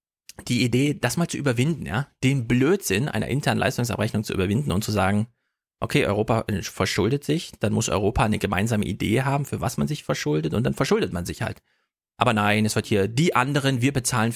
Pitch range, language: 105-140 Hz, German